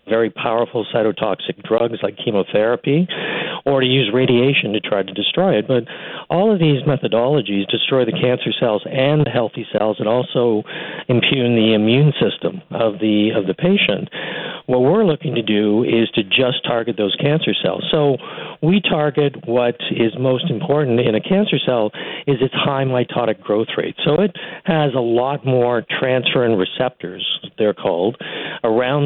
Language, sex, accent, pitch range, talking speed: English, male, American, 115-155 Hz, 165 wpm